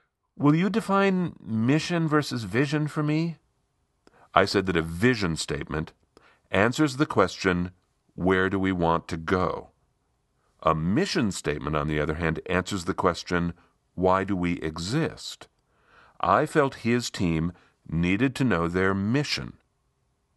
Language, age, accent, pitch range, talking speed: English, 50-69, American, 95-145 Hz, 135 wpm